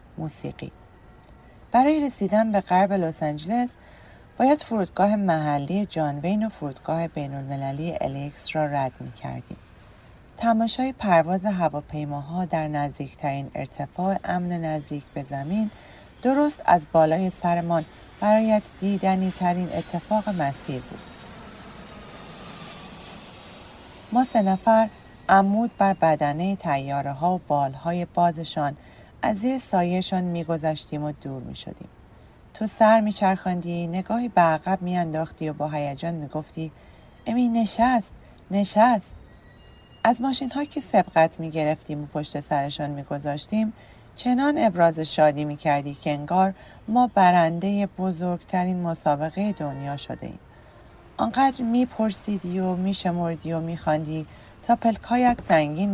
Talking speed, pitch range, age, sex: 110 wpm, 145-200 Hz, 40-59, female